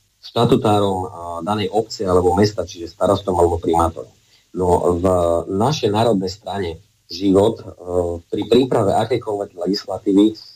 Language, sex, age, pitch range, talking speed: Slovak, male, 30-49, 95-110 Hz, 110 wpm